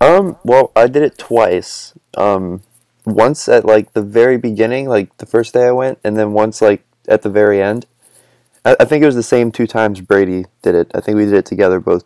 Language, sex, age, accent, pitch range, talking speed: English, male, 20-39, American, 100-120 Hz, 230 wpm